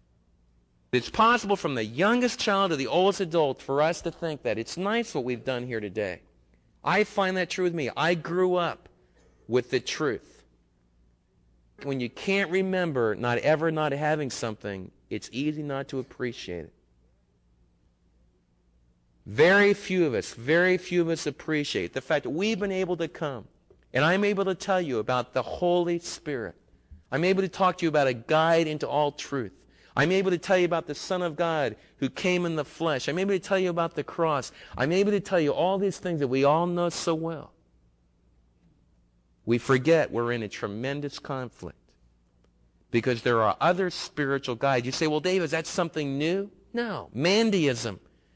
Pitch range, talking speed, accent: 110-175 Hz, 185 wpm, American